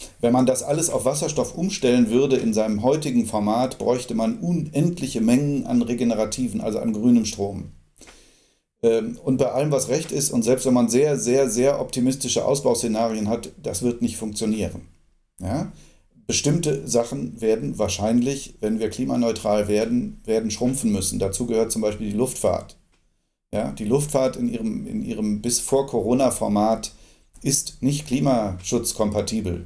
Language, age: German, 40-59